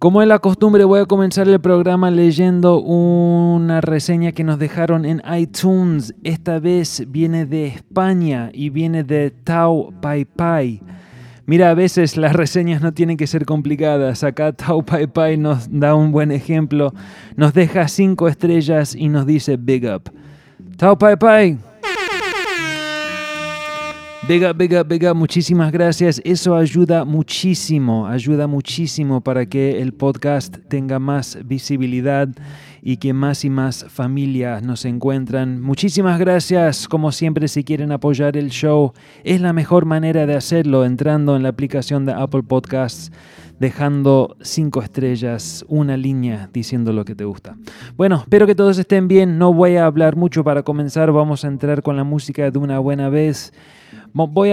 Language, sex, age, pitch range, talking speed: English, male, 20-39, 135-170 Hz, 155 wpm